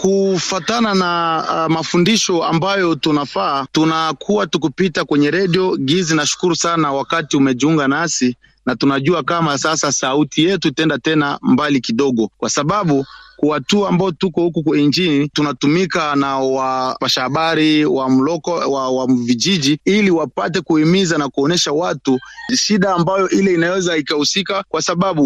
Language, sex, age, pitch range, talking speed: Swahili, male, 30-49, 155-195 Hz, 135 wpm